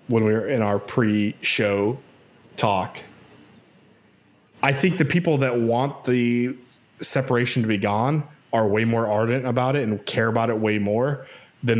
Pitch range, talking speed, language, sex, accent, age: 105-125 Hz, 160 wpm, English, male, American, 20-39